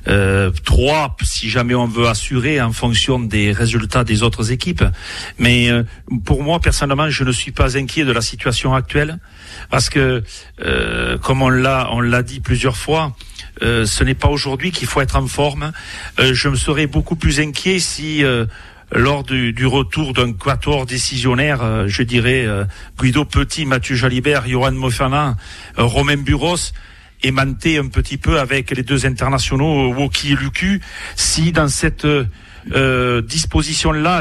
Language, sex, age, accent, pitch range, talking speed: French, male, 50-69, French, 120-150 Hz, 165 wpm